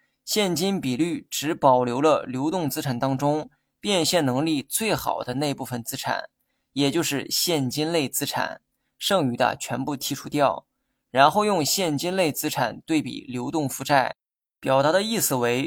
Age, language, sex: 20-39, Chinese, male